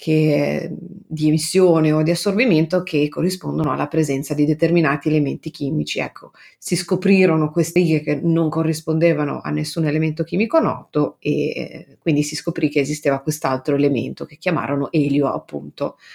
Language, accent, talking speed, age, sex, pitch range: Italian, native, 145 wpm, 30-49, female, 155-185 Hz